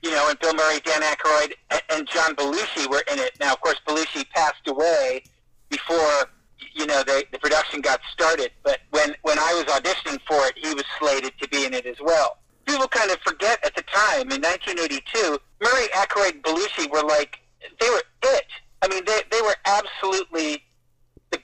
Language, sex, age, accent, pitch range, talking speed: English, male, 50-69, American, 145-215 Hz, 190 wpm